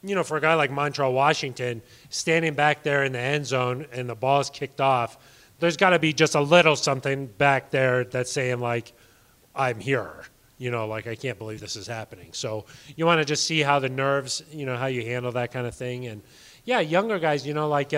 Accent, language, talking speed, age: American, English, 235 wpm, 30-49